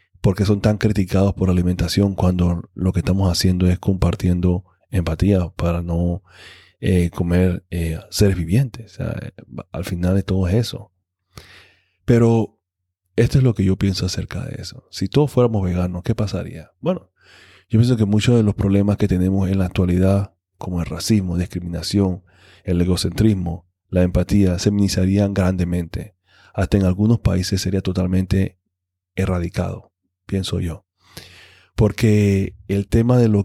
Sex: male